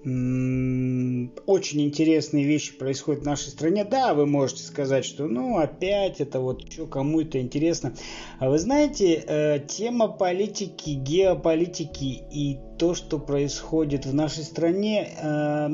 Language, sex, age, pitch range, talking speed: Russian, male, 20-39, 125-155 Hz, 135 wpm